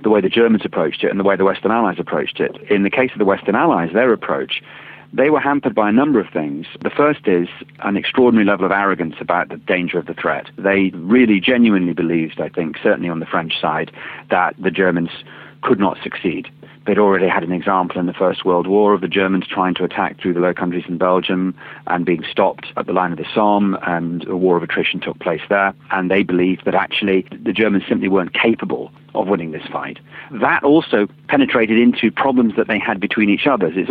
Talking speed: 225 wpm